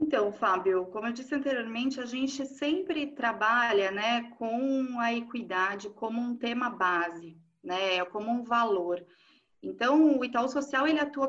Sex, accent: female, Brazilian